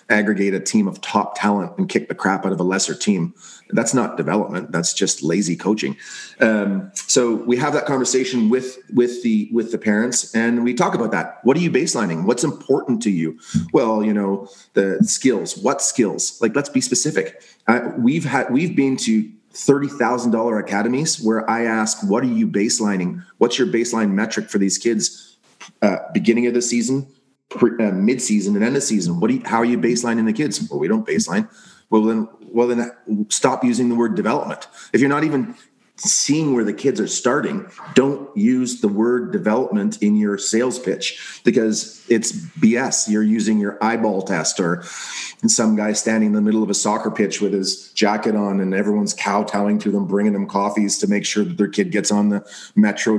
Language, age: English, 30-49